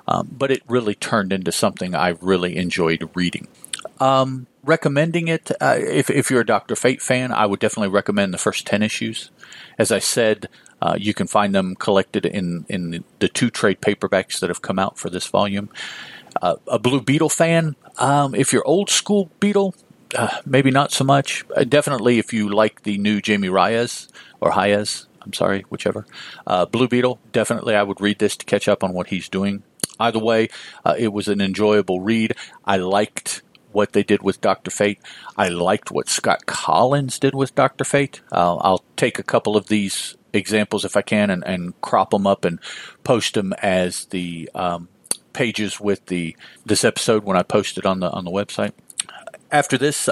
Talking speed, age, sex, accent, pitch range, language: 190 wpm, 50-69, male, American, 100-130 Hz, English